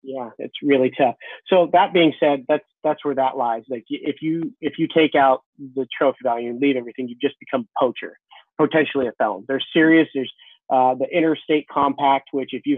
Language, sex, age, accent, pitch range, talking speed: English, male, 30-49, American, 125-155 Hz, 205 wpm